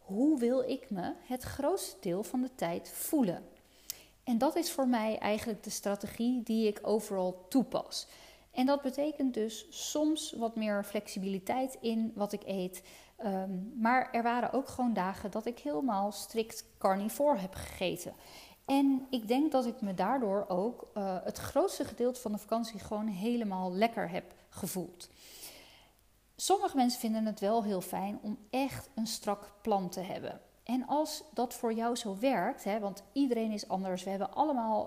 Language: Dutch